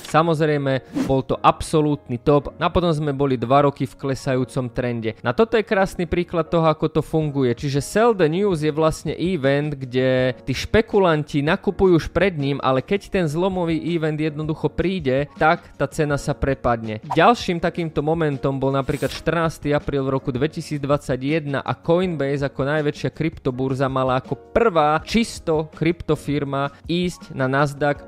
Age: 20-39